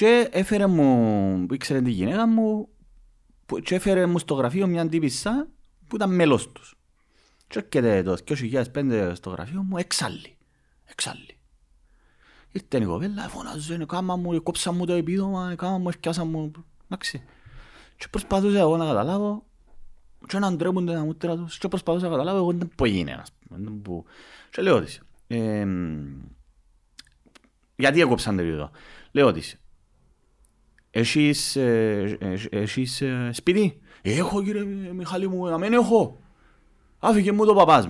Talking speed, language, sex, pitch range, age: 80 wpm, Greek, male, 110-190 Hz, 30-49